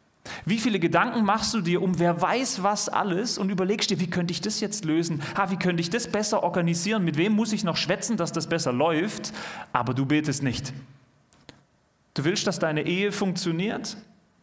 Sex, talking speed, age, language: male, 195 wpm, 30-49, German